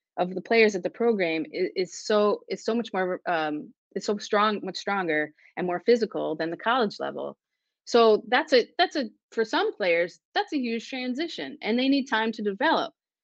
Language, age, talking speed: English, 30-49, 200 wpm